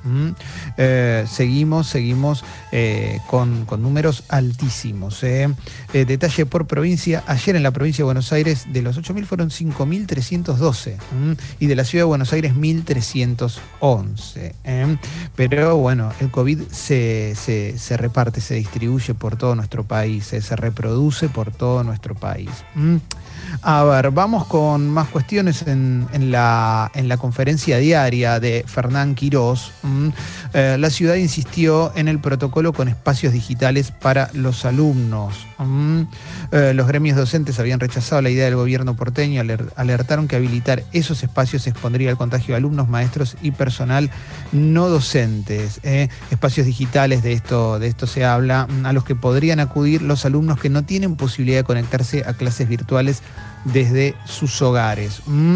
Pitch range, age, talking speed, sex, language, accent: 120-145 Hz, 30-49, 150 wpm, male, Spanish, Argentinian